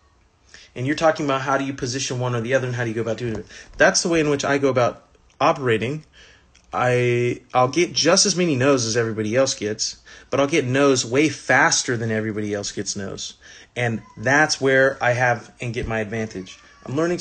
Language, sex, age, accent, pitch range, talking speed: English, male, 30-49, American, 110-140 Hz, 220 wpm